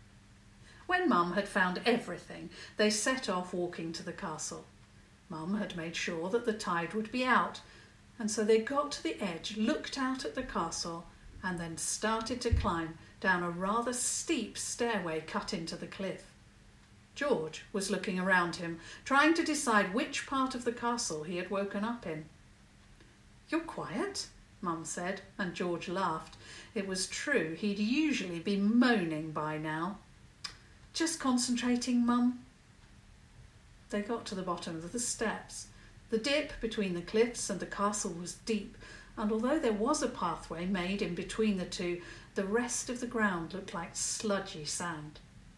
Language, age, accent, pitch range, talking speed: English, 50-69, British, 170-235 Hz, 160 wpm